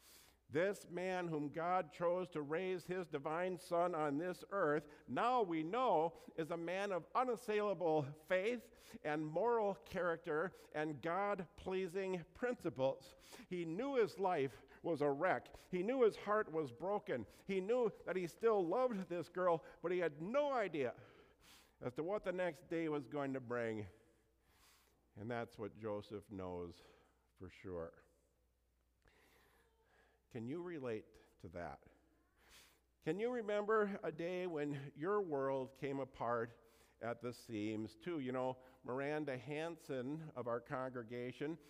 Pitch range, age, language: 125-180 Hz, 50-69, English